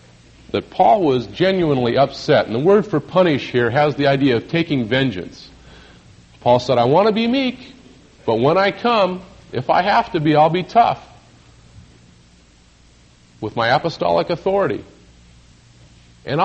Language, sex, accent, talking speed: English, male, American, 150 wpm